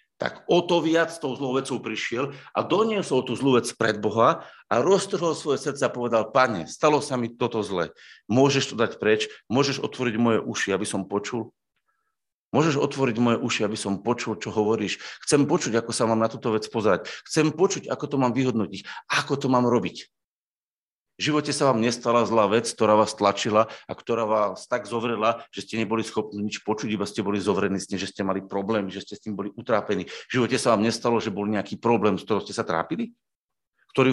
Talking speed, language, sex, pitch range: 210 wpm, Slovak, male, 110-140 Hz